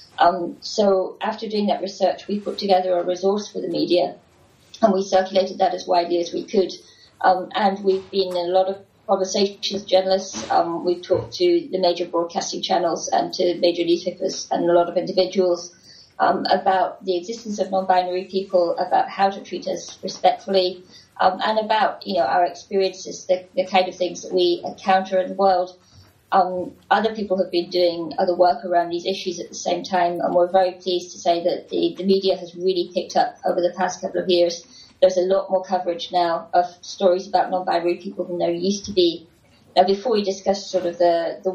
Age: 30-49